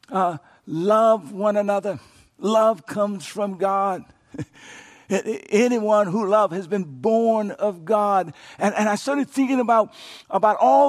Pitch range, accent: 195-255 Hz, American